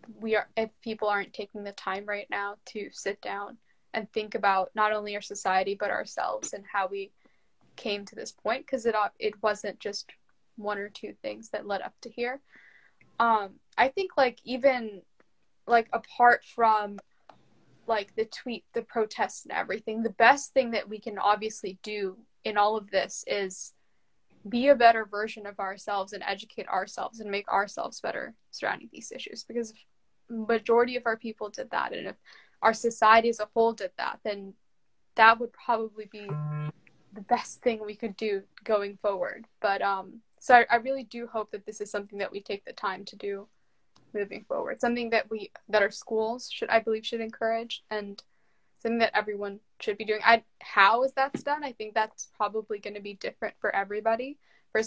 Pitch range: 205-230 Hz